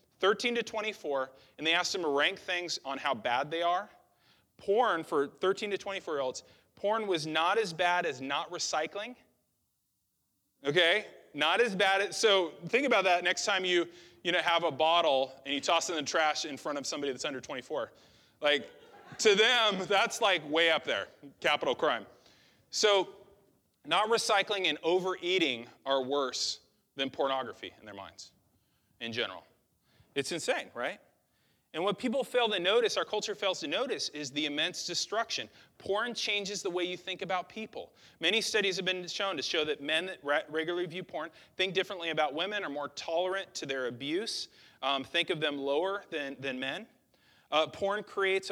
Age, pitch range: 30-49, 150-205 Hz